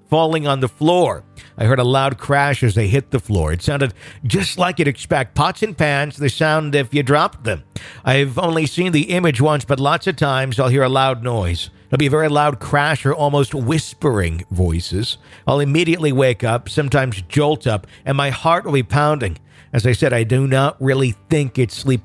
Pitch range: 120-145 Hz